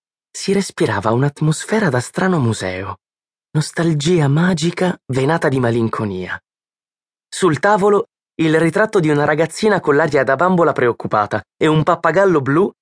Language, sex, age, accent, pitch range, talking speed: Italian, male, 20-39, native, 130-200 Hz, 125 wpm